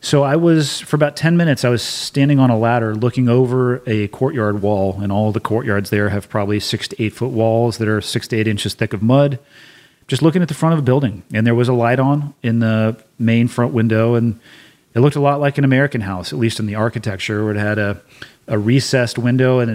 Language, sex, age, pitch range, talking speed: English, male, 30-49, 105-130 Hz, 245 wpm